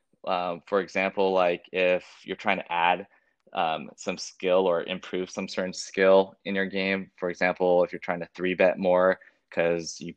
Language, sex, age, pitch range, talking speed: English, male, 20-39, 90-95 Hz, 185 wpm